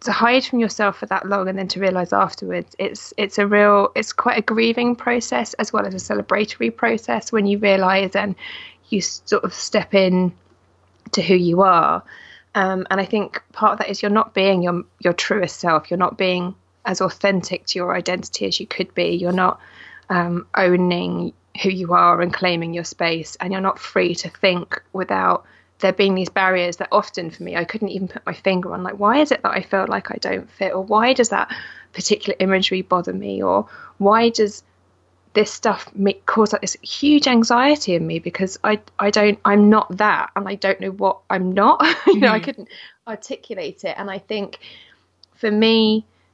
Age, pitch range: 20-39, 180-210 Hz